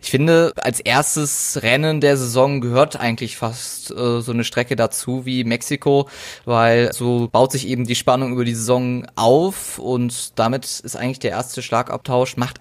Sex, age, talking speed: male, 20-39, 170 wpm